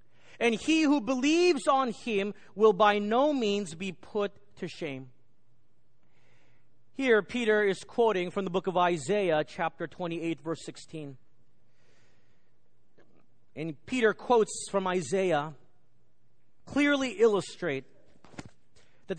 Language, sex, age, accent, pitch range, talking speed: English, male, 40-59, American, 160-255 Hz, 110 wpm